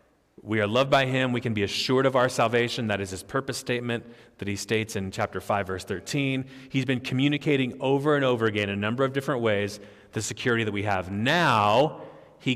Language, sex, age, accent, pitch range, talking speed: English, male, 30-49, American, 115-155 Hz, 215 wpm